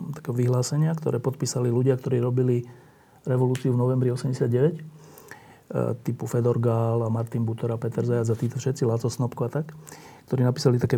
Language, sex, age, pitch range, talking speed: Slovak, male, 40-59, 125-150 Hz, 160 wpm